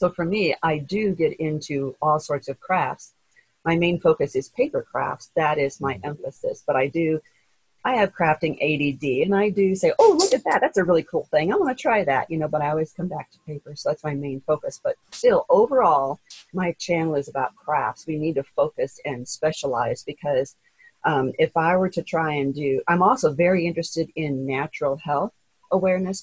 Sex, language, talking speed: female, English, 210 wpm